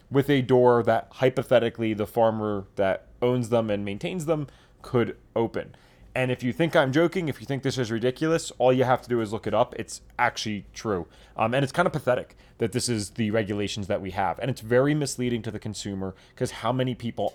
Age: 20-39